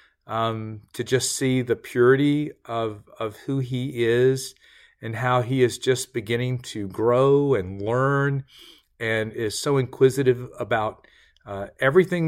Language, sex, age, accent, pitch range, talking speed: English, male, 40-59, American, 110-140 Hz, 135 wpm